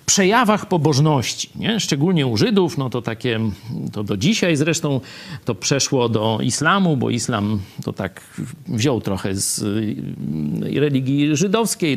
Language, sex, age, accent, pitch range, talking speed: Polish, male, 40-59, native, 115-170 Hz, 130 wpm